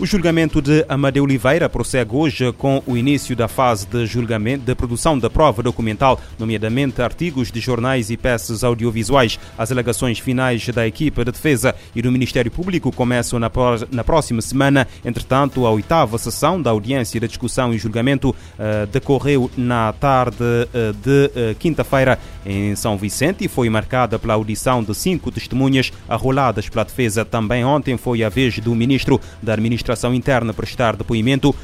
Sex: male